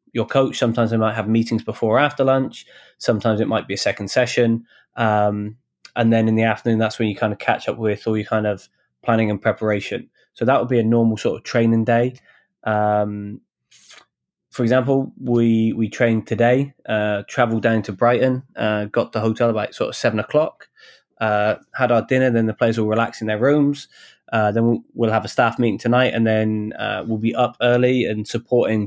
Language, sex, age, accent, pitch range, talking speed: English, male, 20-39, British, 110-120 Hz, 205 wpm